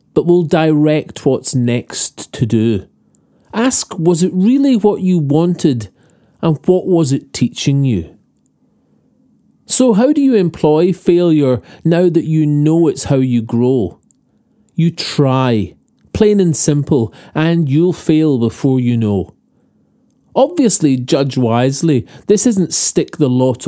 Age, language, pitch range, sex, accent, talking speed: 40-59, English, 120-170 Hz, male, British, 135 wpm